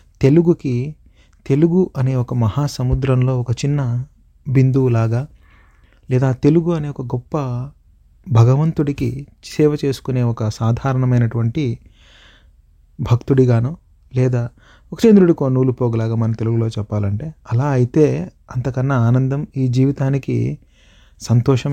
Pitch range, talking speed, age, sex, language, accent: 115-135 Hz, 95 wpm, 30-49, male, Telugu, native